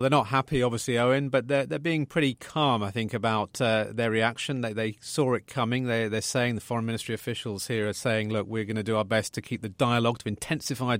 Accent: British